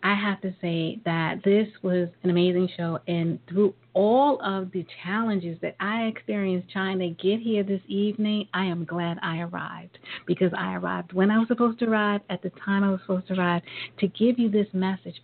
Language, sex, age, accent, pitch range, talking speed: English, female, 40-59, American, 170-205 Hz, 205 wpm